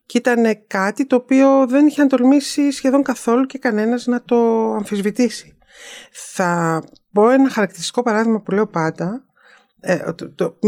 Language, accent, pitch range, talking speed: Greek, native, 160-225 Hz, 135 wpm